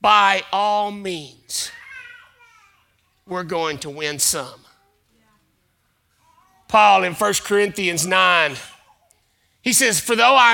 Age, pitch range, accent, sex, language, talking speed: 40-59, 205-270 Hz, American, male, English, 100 wpm